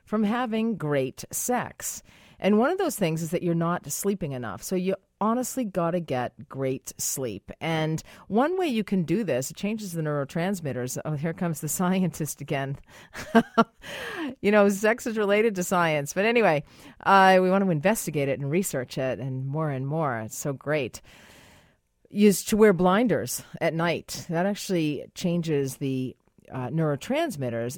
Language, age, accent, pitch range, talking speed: English, 40-59, American, 145-205 Hz, 165 wpm